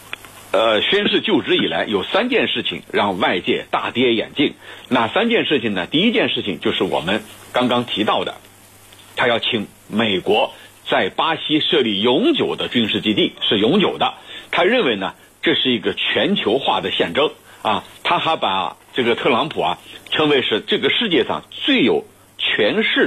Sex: male